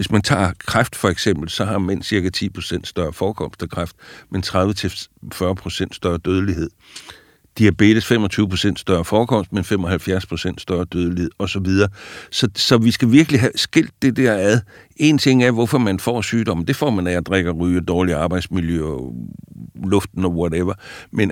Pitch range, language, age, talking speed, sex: 90-115 Hz, English, 60-79, 170 wpm, male